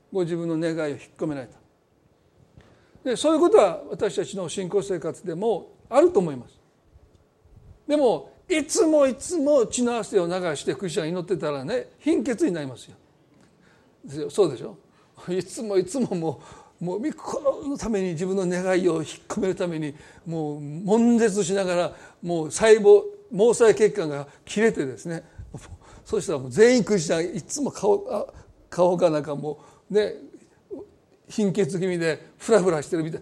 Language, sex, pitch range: Japanese, male, 165-240 Hz